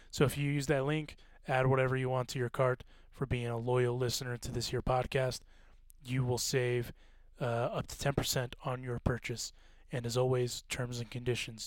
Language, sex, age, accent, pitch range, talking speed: English, male, 20-39, American, 115-135 Hz, 195 wpm